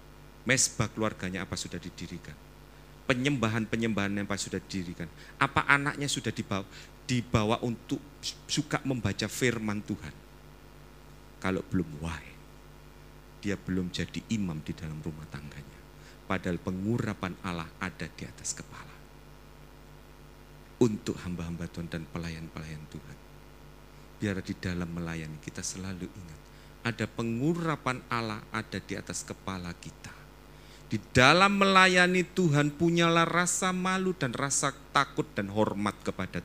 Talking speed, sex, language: 120 wpm, male, Indonesian